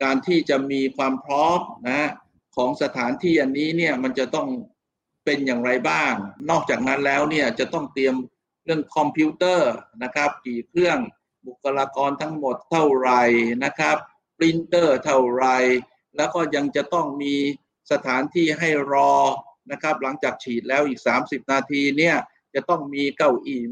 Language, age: Thai, 60-79